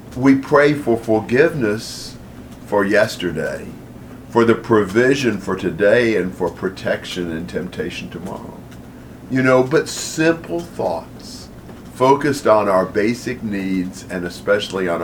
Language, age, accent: English, 50-69, American